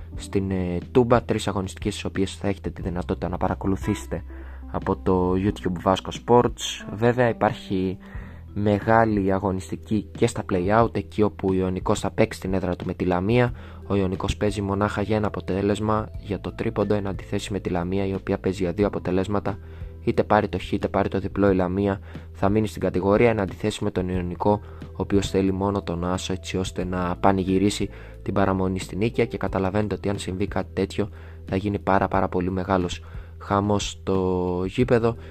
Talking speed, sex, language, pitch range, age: 180 wpm, male, Greek, 90-105 Hz, 20-39